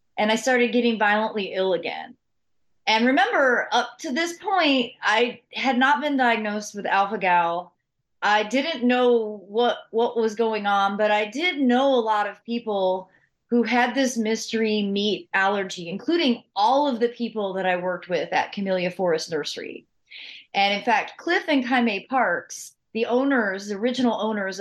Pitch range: 205-255 Hz